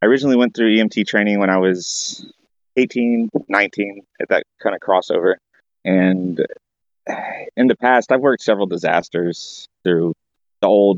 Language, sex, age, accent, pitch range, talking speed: English, male, 30-49, American, 90-115 Hz, 150 wpm